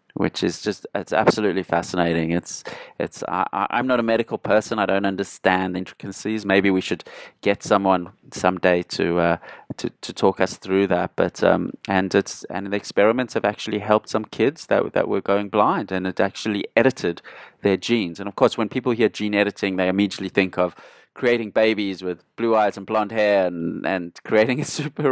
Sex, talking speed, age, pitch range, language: male, 190 wpm, 30-49, 95-115 Hz, English